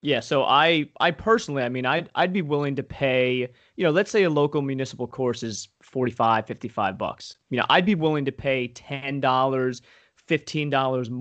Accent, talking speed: American, 180 wpm